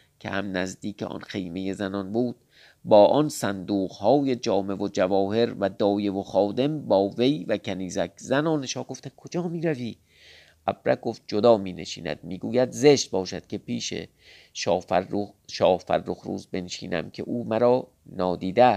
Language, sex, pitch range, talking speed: Persian, male, 95-130 Hz, 150 wpm